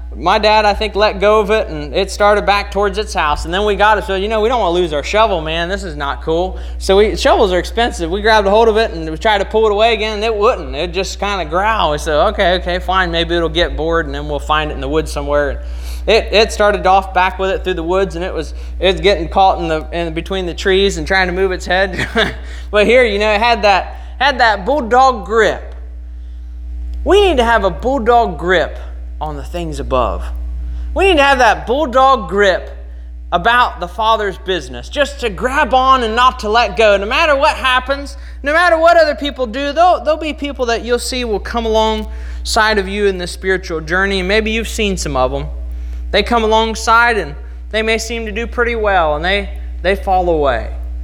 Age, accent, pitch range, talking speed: 20-39, American, 155-225 Hz, 235 wpm